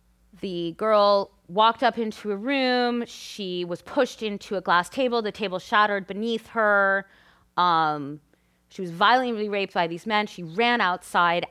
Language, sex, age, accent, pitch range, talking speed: English, female, 30-49, American, 175-240 Hz, 155 wpm